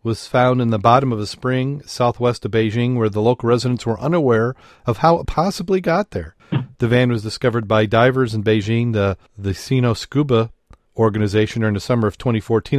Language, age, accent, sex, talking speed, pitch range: English, 40-59, American, male, 190 wpm, 105-120 Hz